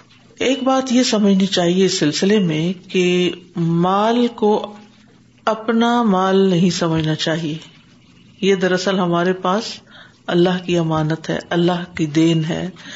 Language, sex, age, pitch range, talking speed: Urdu, female, 50-69, 175-215 Hz, 130 wpm